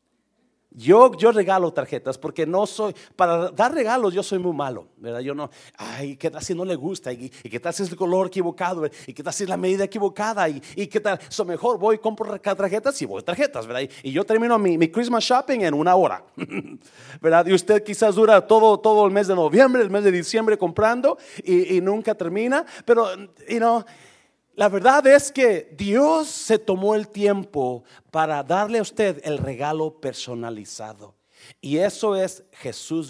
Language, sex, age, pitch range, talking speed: Spanish, male, 40-59, 135-205 Hz, 205 wpm